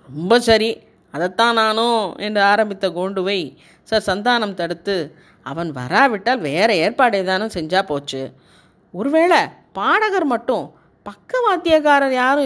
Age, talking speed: 30-49, 110 wpm